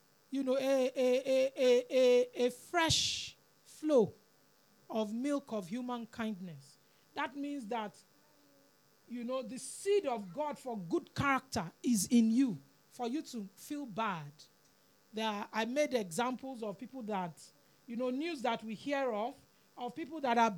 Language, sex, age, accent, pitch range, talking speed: English, male, 40-59, Nigerian, 205-270 Hz, 155 wpm